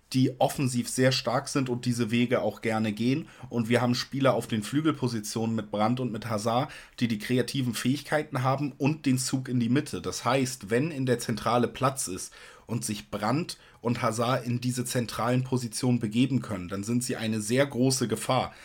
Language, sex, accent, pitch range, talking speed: German, male, German, 115-135 Hz, 195 wpm